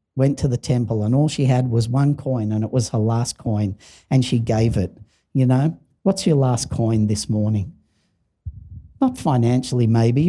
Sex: male